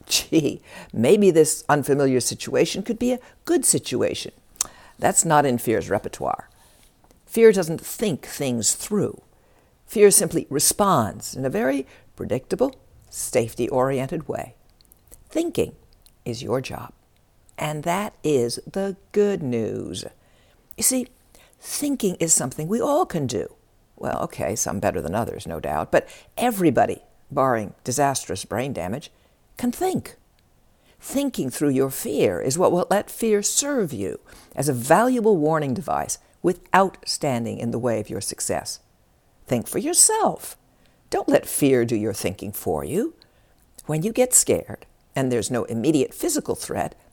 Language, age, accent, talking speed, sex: English, 60-79, American, 140 wpm, female